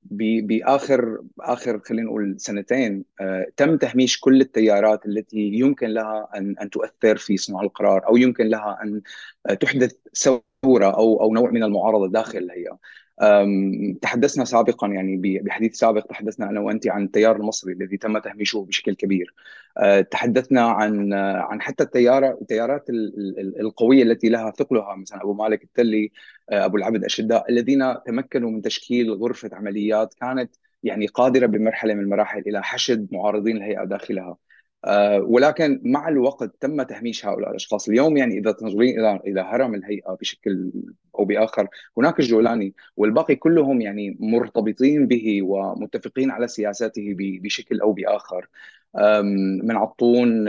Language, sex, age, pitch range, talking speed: Arabic, male, 30-49, 100-120 Hz, 125 wpm